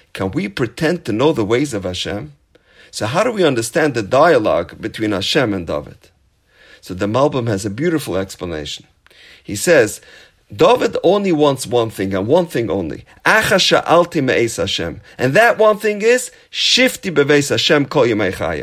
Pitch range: 120-195 Hz